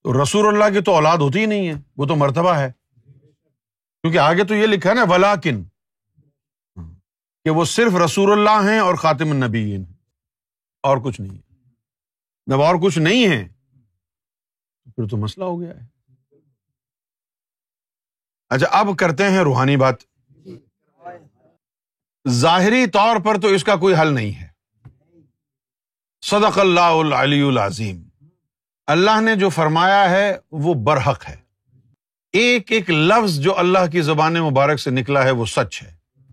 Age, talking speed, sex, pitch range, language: 50-69, 145 wpm, male, 125-190 Hz, Urdu